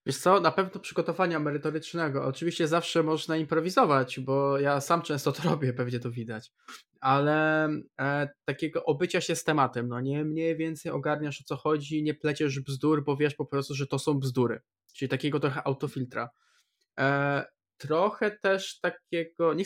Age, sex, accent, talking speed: 20-39, male, native, 160 wpm